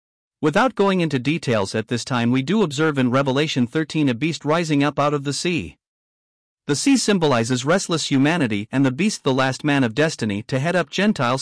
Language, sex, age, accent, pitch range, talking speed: English, male, 50-69, American, 125-175 Hz, 200 wpm